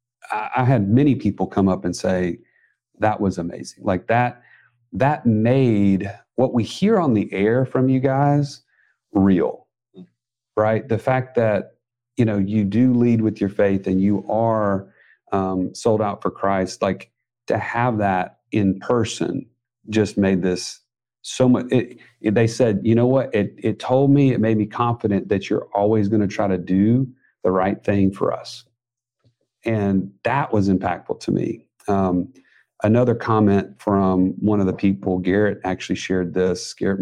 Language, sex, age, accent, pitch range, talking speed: English, male, 40-59, American, 100-125 Hz, 165 wpm